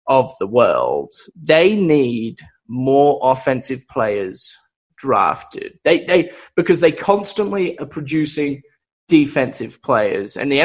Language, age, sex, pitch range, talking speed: English, 20-39, male, 140-200 Hz, 115 wpm